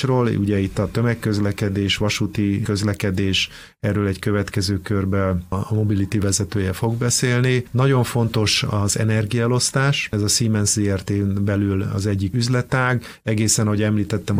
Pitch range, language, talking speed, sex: 100-115 Hz, Hungarian, 130 wpm, male